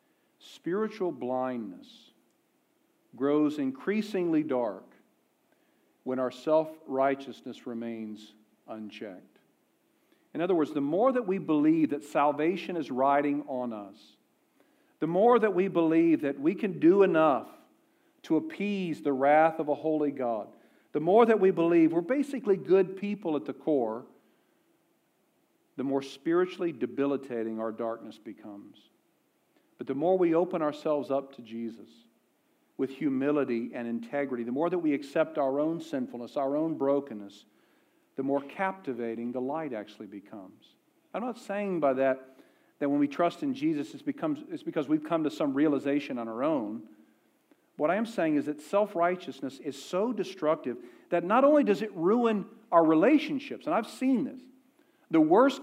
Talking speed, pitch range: 150 wpm, 135-205 Hz